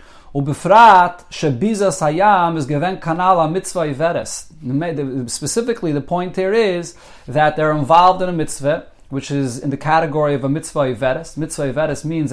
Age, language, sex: 30-49, English, male